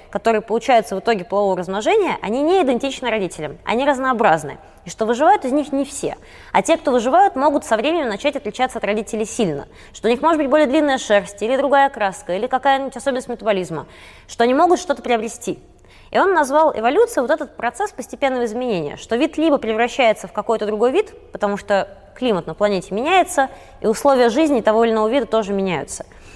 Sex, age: female, 20-39